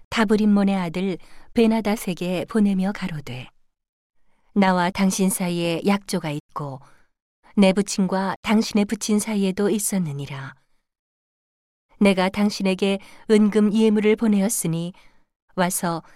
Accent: native